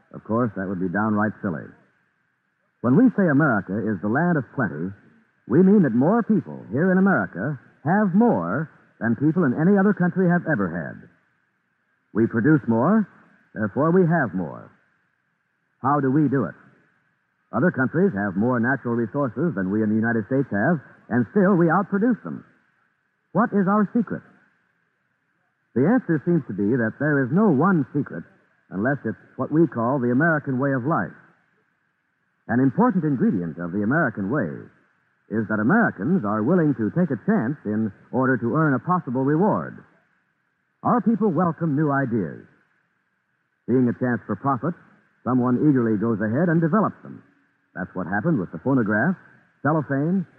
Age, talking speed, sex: 60-79, 165 wpm, male